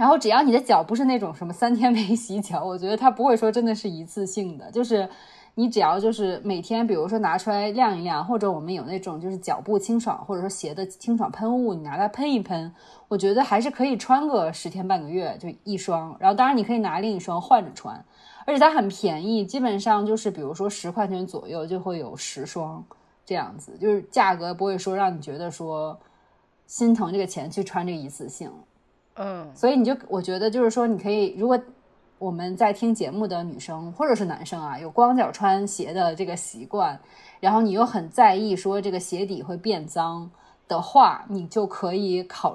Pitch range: 180-225 Hz